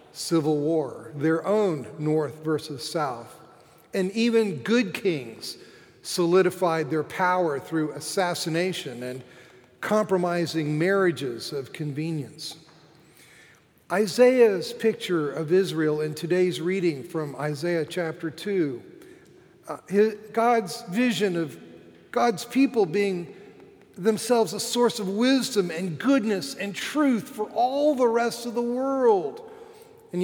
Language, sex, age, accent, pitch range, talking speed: English, male, 50-69, American, 155-195 Hz, 110 wpm